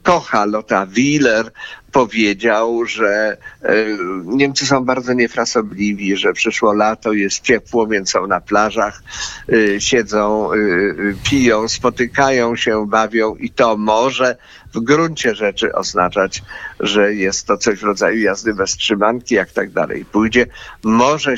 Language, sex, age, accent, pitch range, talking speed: Polish, male, 50-69, native, 105-125 Hz, 130 wpm